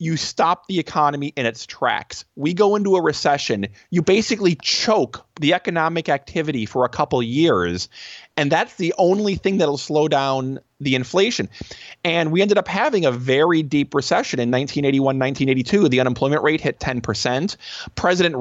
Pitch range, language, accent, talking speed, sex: 130-175 Hz, English, American, 170 wpm, male